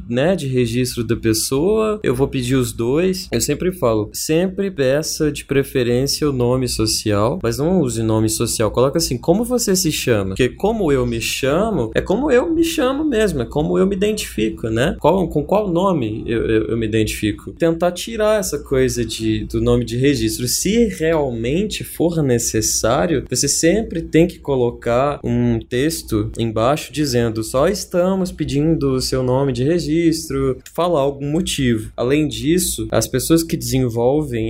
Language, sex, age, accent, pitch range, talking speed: Portuguese, male, 20-39, Brazilian, 115-155 Hz, 170 wpm